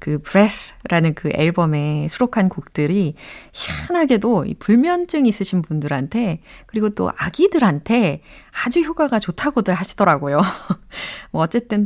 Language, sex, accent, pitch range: Korean, female, native, 165-260 Hz